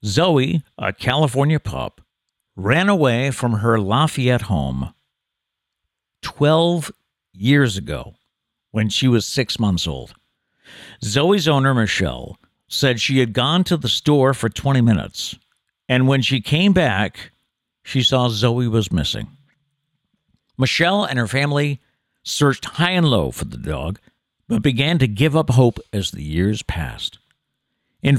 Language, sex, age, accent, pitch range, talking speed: English, male, 60-79, American, 110-150 Hz, 135 wpm